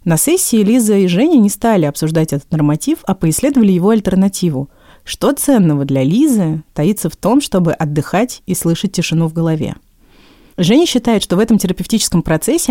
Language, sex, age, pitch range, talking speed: Russian, female, 30-49, 165-225 Hz, 165 wpm